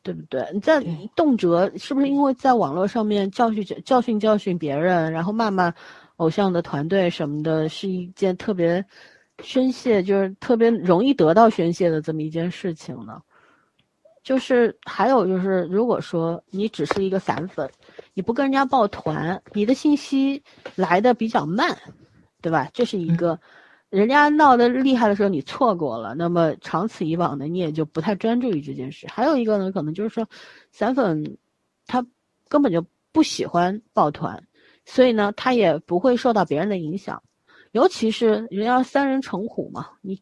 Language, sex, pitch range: Chinese, female, 165-235 Hz